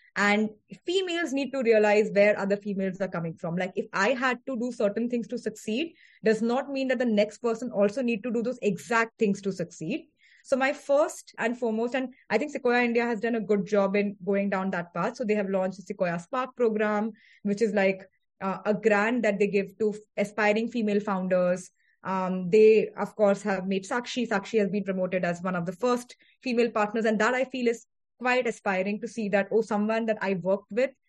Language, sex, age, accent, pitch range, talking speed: English, female, 20-39, Indian, 200-250 Hz, 215 wpm